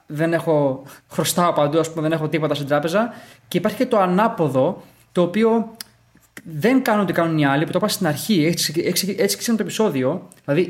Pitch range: 145-190 Hz